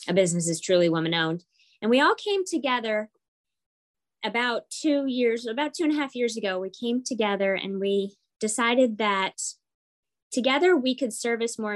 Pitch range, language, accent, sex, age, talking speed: 185-240 Hz, English, American, female, 20-39, 165 wpm